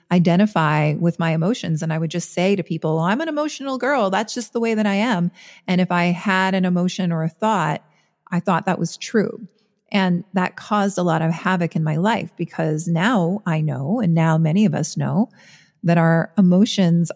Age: 40-59